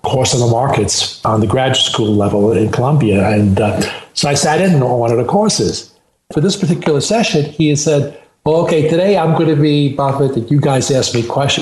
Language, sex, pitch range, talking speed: English, male, 130-165 Hz, 220 wpm